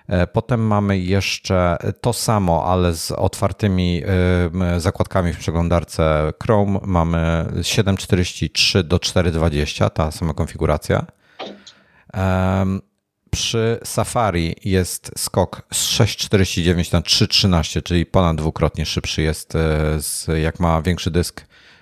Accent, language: native, Polish